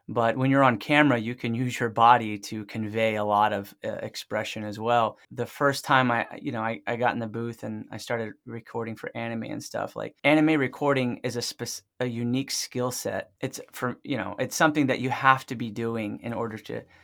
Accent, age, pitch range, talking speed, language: American, 20-39, 115-130 Hz, 225 wpm, English